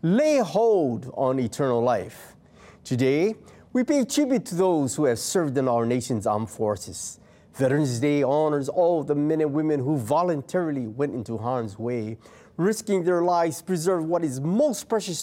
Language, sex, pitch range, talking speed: English, male, 130-185 Hz, 165 wpm